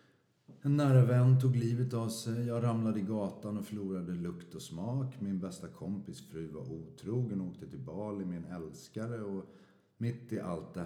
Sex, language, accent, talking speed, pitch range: male, Swedish, native, 180 wpm, 80-110 Hz